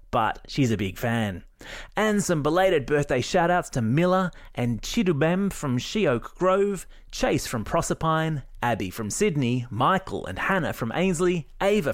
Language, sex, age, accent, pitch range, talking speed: English, male, 30-49, Australian, 110-170 Hz, 145 wpm